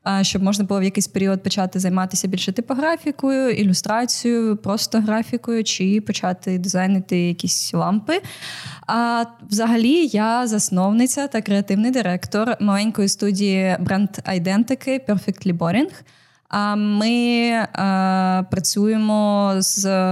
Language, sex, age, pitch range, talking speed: Ukrainian, female, 20-39, 185-225 Hz, 100 wpm